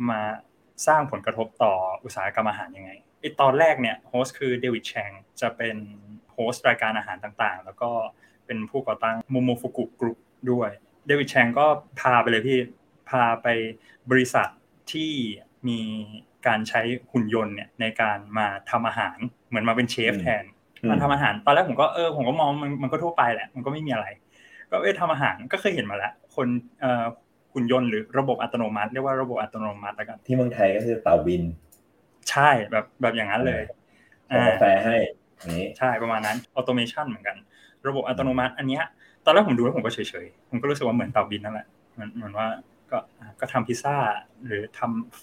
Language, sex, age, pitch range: Thai, male, 20-39, 110-130 Hz